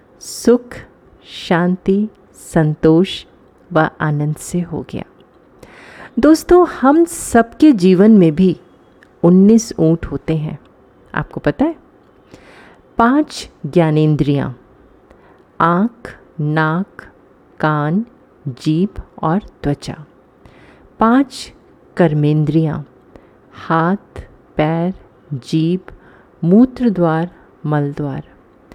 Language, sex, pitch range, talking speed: Hindi, female, 155-215 Hz, 75 wpm